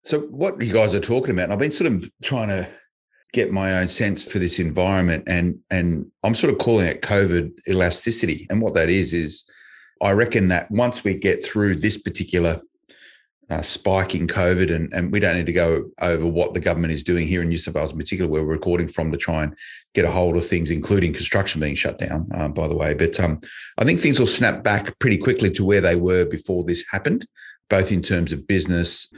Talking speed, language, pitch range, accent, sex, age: 230 wpm, English, 85-95 Hz, Australian, male, 30-49